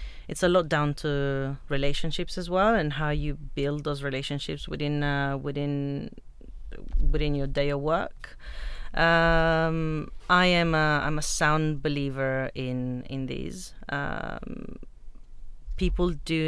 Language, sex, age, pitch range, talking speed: English, female, 30-49, 135-160 Hz, 130 wpm